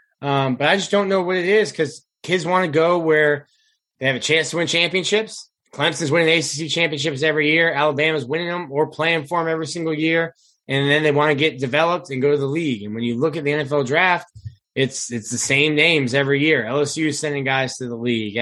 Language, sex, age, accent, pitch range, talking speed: English, male, 20-39, American, 135-160 Hz, 235 wpm